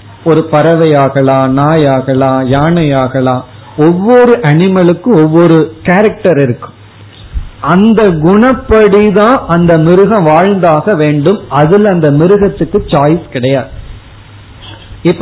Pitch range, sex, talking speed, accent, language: 140-195 Hz, male, 85 wpm, native, Tamil